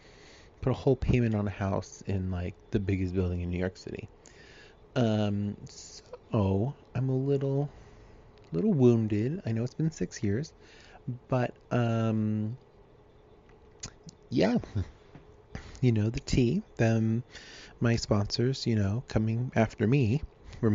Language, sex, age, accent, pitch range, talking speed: English, male, 30-49, American, 105-140 Hz, 130 wpm